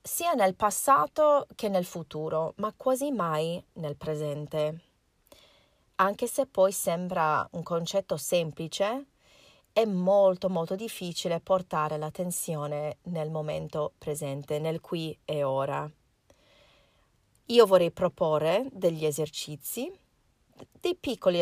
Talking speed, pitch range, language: 105 wpm, 155-200 Hz, Italian